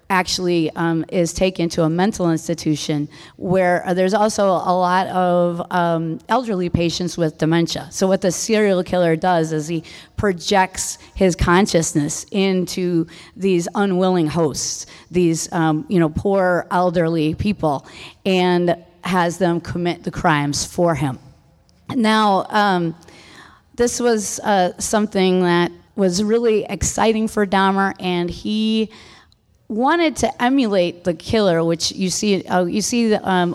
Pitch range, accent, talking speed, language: 165-195 Hz, American, 135 wpm, English